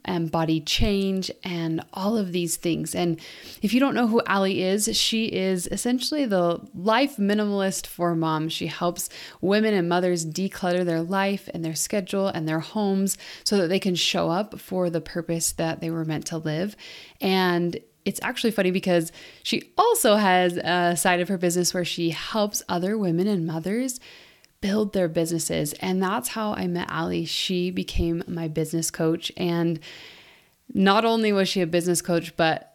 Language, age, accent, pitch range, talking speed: English, 20-39, American, 165-200 Hz, 175 wpm